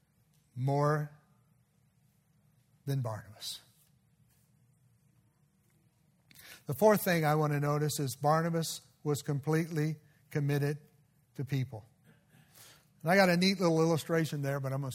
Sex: male